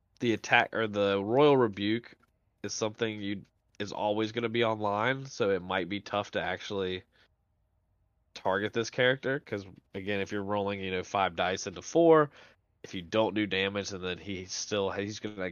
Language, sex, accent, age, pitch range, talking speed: English, male, American, 20-39, 95-115 Hz, 190 wpm